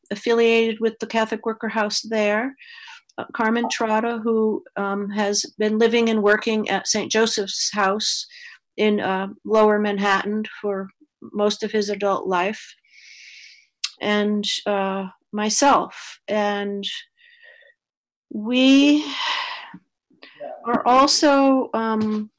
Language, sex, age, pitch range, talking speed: English, female, 50-69, 210-250 Hz, 105 wpm